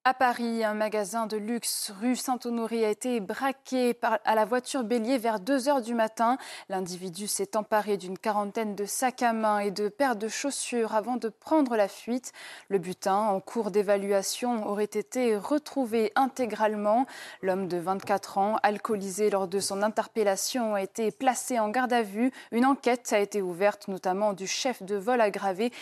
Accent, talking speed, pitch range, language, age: French, 170 wpm, 200-245 Hz, French, 20-39